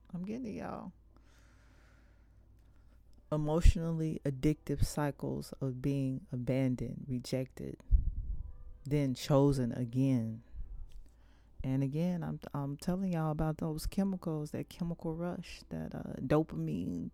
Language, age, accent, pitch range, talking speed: English, 30-49, American, 95-155 Hz, 100 wpm